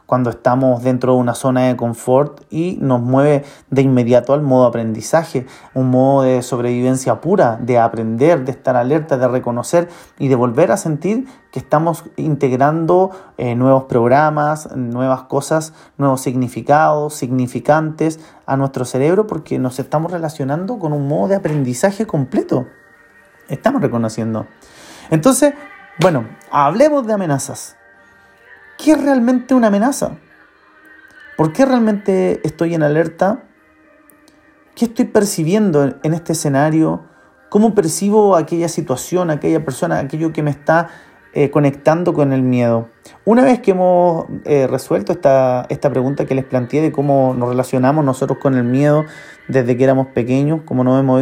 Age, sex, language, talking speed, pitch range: 30-49, male, Spanish, 145 wpm, 130-170 Hz